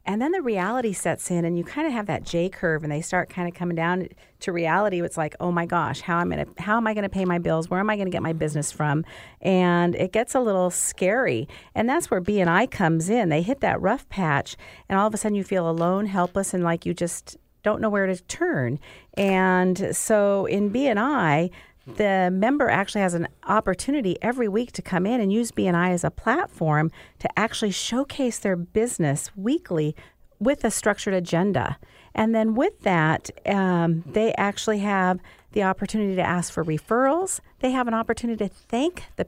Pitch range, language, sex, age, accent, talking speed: 175-225 Hz, English, female, 50-69, American, 210 wpm